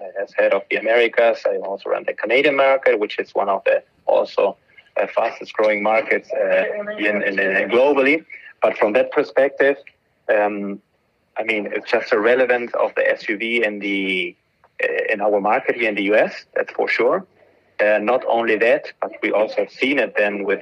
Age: 30-49